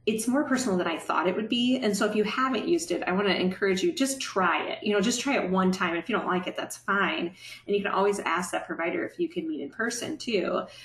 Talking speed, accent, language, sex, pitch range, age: 290 wpm, American, English, female, 170-225 Hz, 30-49